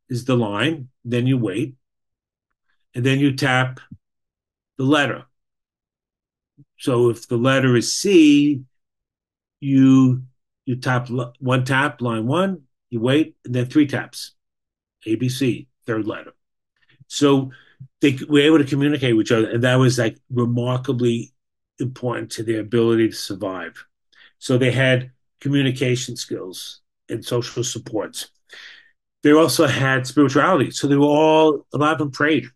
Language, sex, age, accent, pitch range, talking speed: English, male, 50-69, American, 120-140 Hz, 140 wpm